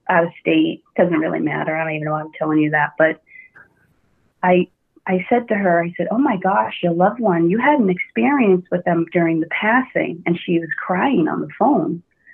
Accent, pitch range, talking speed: American, 175-230 Hz, 220 wpm